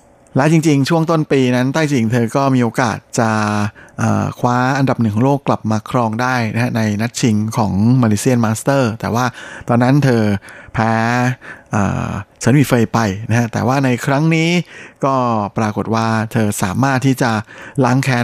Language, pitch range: Thai, 110-130 Hz